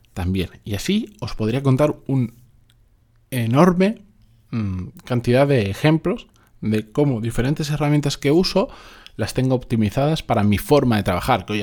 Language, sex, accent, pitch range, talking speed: Spanish, male, Spanish, 100-130 Hz, 145 wpm